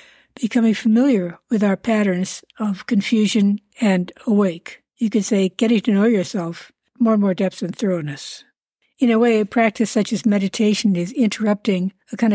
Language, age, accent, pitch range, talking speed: English, 60-79, American, 190-225 Hz, 165 wpm